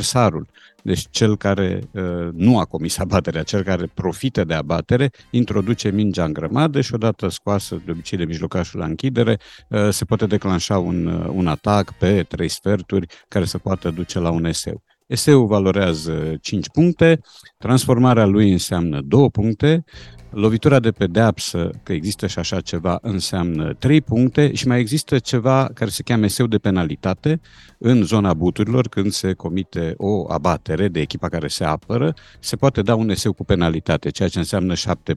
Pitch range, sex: 90-120 Hz, male